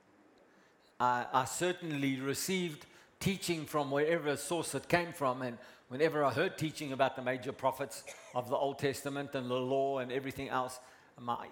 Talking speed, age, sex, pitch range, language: 160 wpm, 60-79, male, 130-165 Hz, English